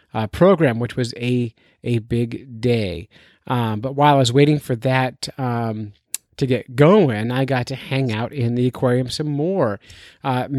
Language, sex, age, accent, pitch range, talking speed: English, male, 30-49, American, 120-155 Hz, 175 wpm